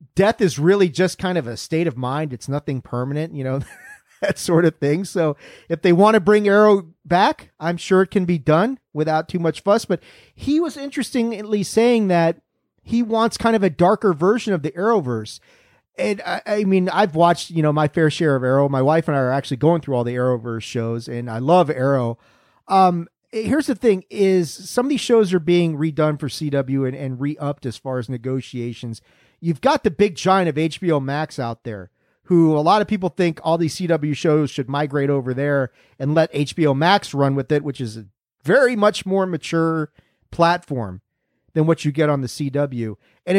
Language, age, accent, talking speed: English, 40-59, American, 205 wpm